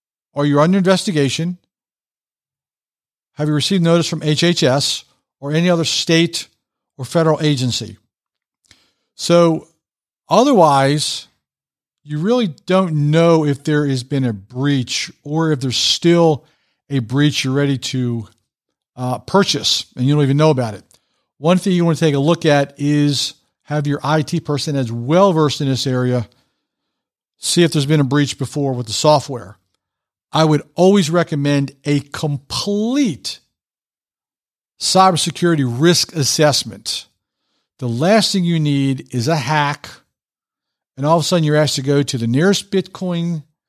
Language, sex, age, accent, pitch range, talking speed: English, male, 50-69, American, 135-170 Hz, 145 wpm